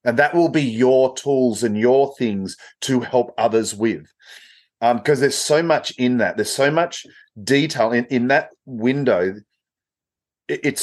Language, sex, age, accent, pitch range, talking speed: English, male, 30-49, Australian, 115-150 Hz, 160 wpm